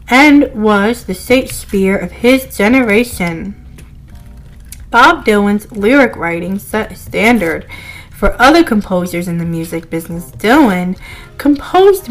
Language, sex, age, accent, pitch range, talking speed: English, female, 20-39, American, 195-275 Hz, 115 wpm